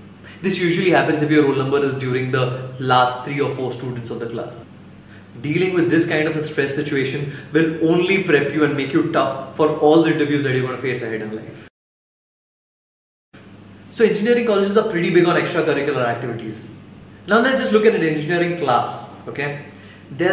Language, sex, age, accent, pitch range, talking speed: Hindi, male, 20-39, native, 140-180 Hz, 190 wpm